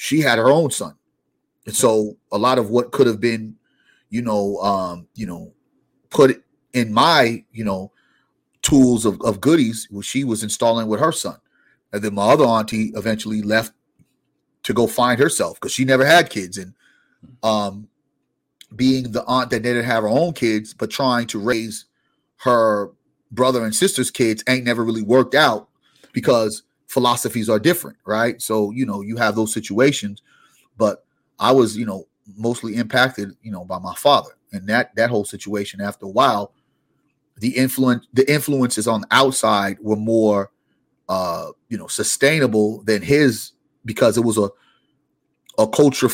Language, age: English, 30-49